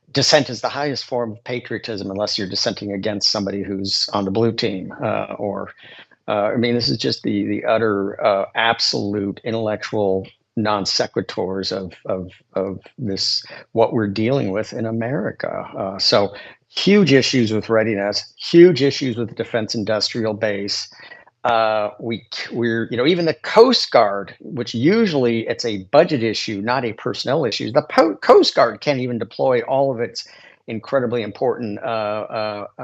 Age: 50-69